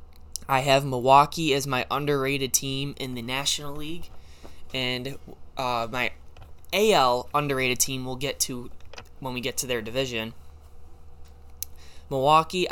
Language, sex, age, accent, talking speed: English, male, 10-29, American, 125 wpm